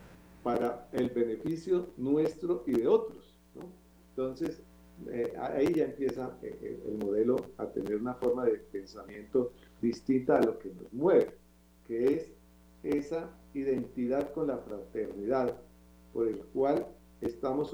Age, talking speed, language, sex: 50-69, 130 wpm, Spanish, male